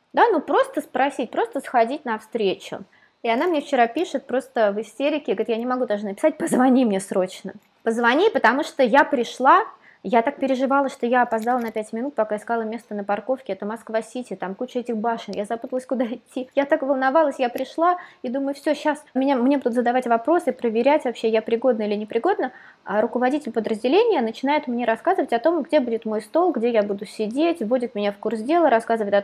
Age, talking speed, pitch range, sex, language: 20-39, 195 wpm, 220-280 Hz, female, Russian